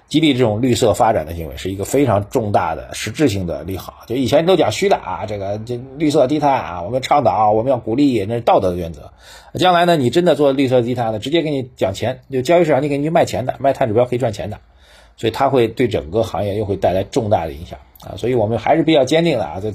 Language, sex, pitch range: Chinese, male, 95-125 Hz